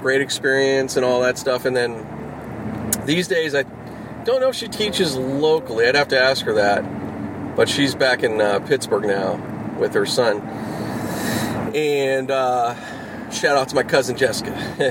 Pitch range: 110-155 Hz